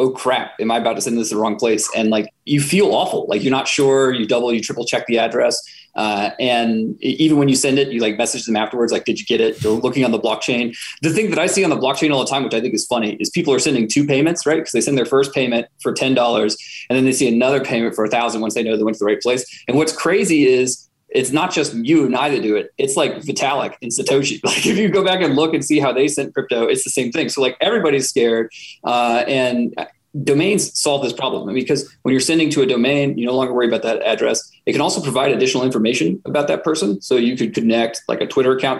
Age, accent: 20-39, American